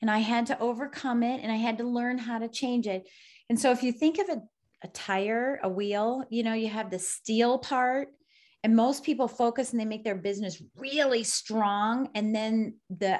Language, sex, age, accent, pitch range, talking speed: English, female, 30-49, American, 200-255 Hz, 215 wpm